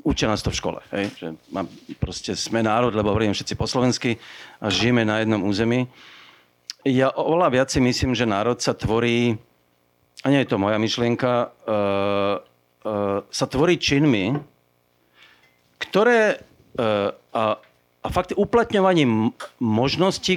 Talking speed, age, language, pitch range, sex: 130 wpm, 40-59, Slovak, 100-135 Hz, male